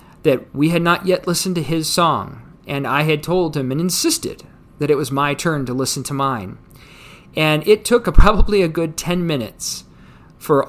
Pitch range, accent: 135-175 Hz, American